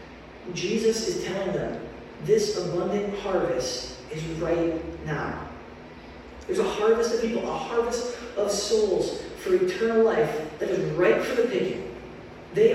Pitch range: 170-240 Hz